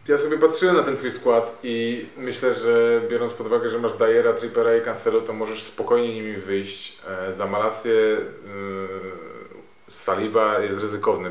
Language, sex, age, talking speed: Polish, male, 20-39, 155 wpm